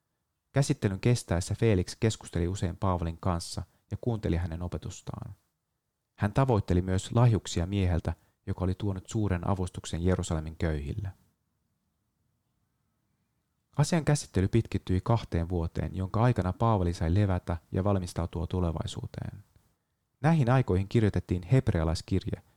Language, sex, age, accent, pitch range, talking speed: Finnish, male, 30-49, native, 90-115 Hz, 105 wpm